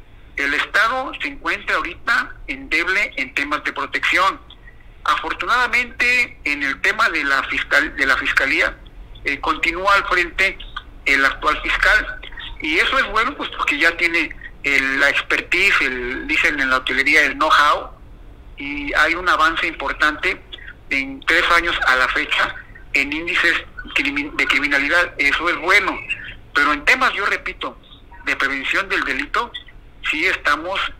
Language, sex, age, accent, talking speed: Spanish, male, 50-69, Mexican, 145 wpm